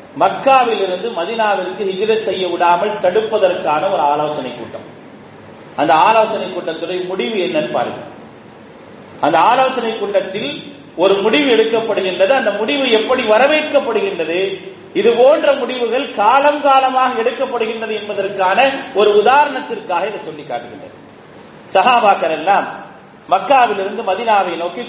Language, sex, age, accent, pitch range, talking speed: English, male, 30-49, Indian, 190-250 Hz, 90 wpm